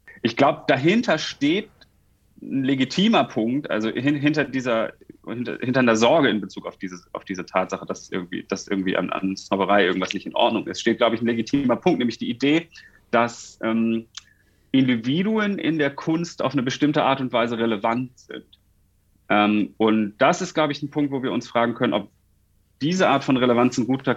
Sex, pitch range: male, 100-140 Hz